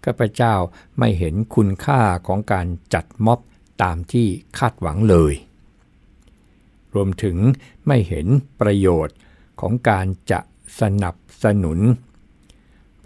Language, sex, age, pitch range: Thai, male, 60-79, 90-115 Hz